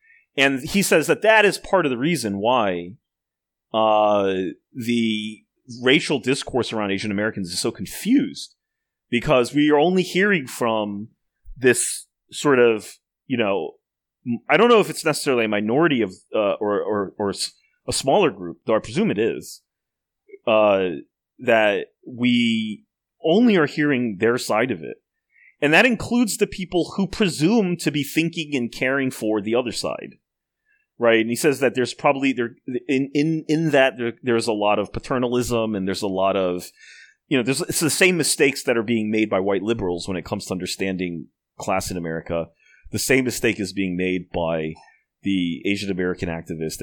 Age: 30-49